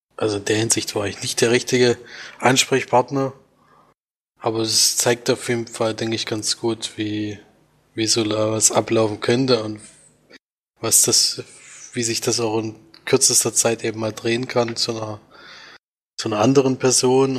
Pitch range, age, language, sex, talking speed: 110-125 Hz, 20-39, German, male, 160 wpm